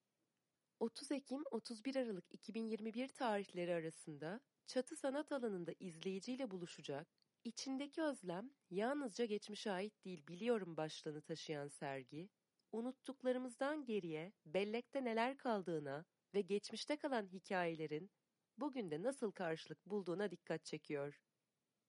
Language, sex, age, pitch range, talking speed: Turkish, female, 30-49, 180-245 Hz, 100 wpm